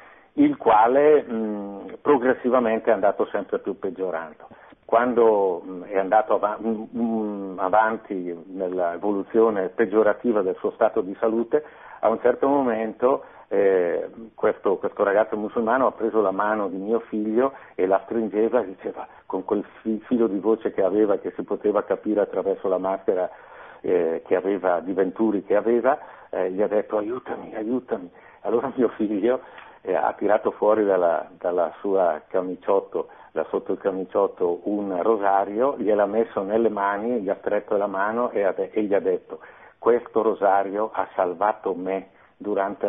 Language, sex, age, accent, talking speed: Italian, male, 50-69, native, 140 wpm